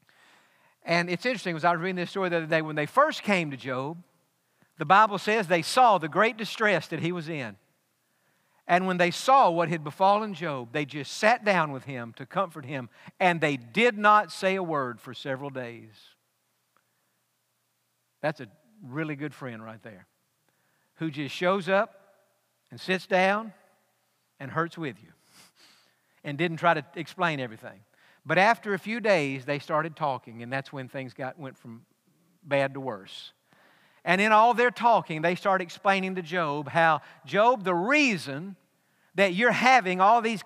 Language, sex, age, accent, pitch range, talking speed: English, male, 50-69, American, 155-205 Hz, 175 wpm